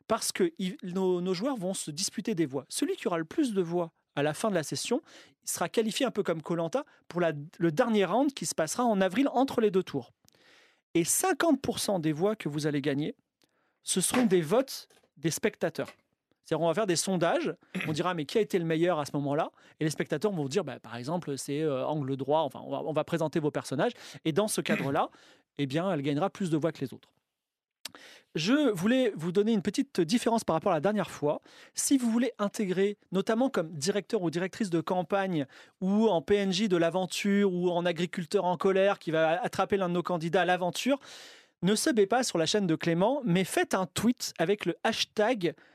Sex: male